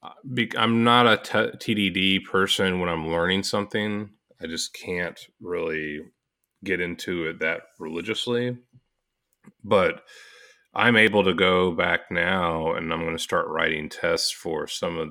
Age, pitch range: 30-49, 85-115 Hz